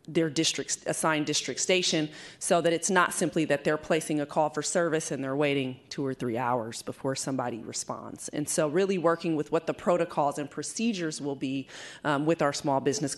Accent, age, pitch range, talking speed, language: American, 30-49, 140-170 Hz, 200 wpm, English